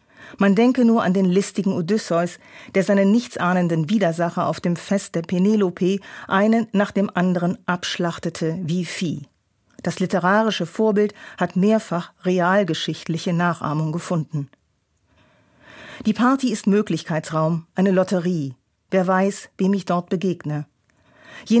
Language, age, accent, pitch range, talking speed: German, 40-59, German, 170-205 Hz, 120 wpm